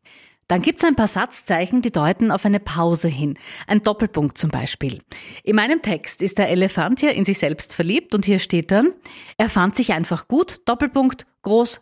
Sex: female